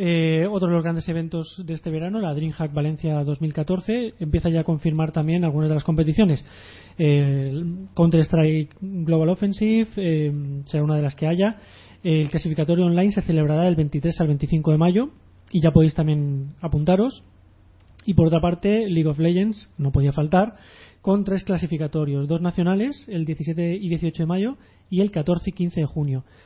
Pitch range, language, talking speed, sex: 145-180 Hz, Spanish, 180 wpm, male